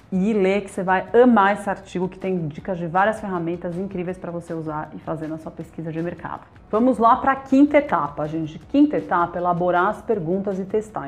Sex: female